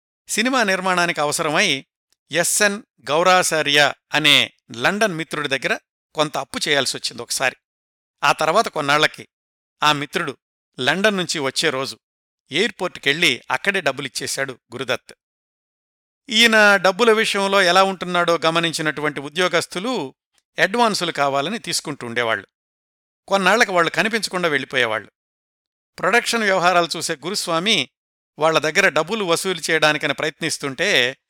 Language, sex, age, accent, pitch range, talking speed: Telugu, male, 60-79, native, 150-190 Hz, 95 wpm